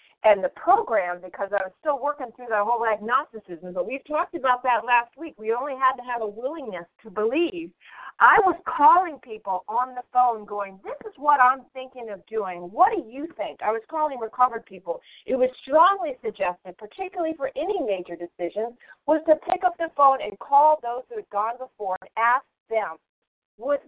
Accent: American